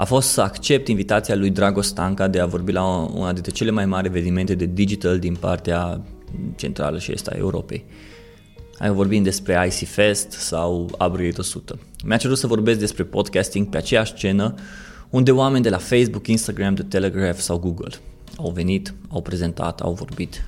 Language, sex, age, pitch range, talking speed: Romanian, male, 20-39, 90-110 Hz, 170 wpm